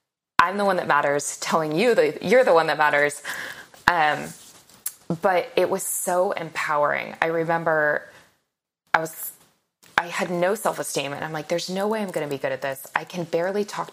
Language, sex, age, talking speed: English, female, 20-39, 190 wpm